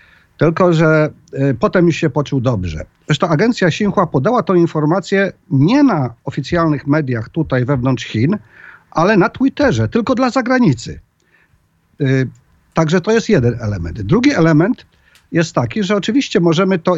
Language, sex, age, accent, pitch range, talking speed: Polish, male, 50-69, native, 130-180 Hz, 140 wpm